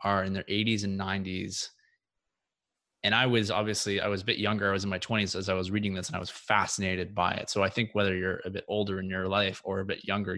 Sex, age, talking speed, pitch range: male, 20-39, 265 wpm, 95-110 Hz